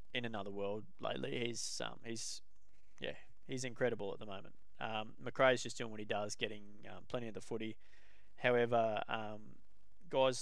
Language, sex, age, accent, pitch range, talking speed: English, male, 20-39, Australian, 105-125 Hz, 165 wpm